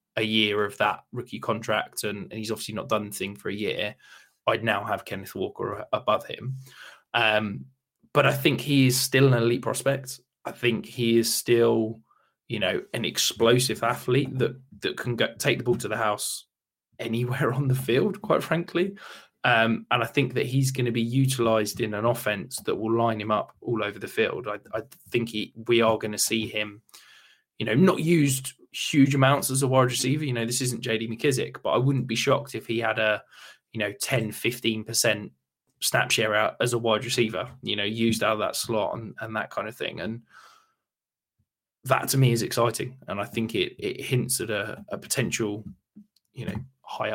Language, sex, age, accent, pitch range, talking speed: English, male, 20-39, British, 110-130 Hz, 205 wpm